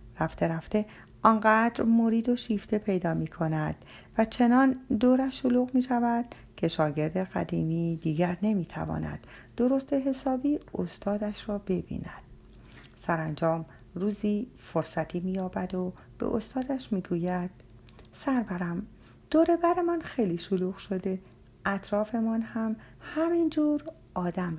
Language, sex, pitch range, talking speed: Persian, female, 165-235 Hz, 115 wpm